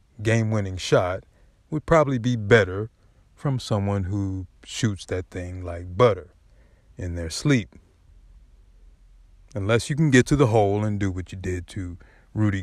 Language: English